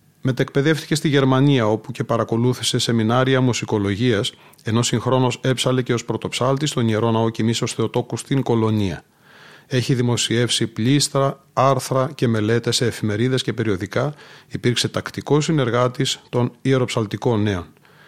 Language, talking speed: Greek, 125 wpm